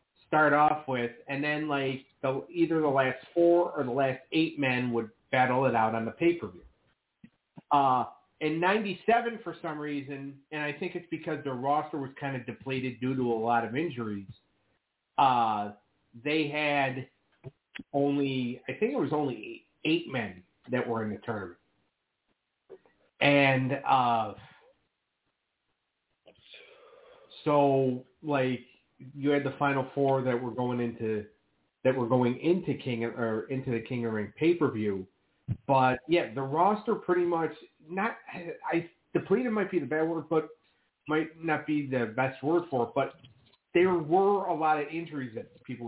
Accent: American